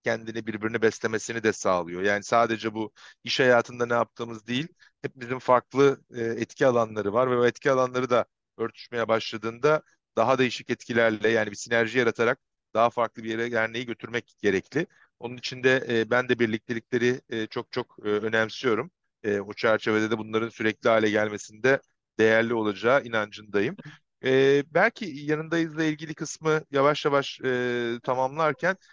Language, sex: Turkish, male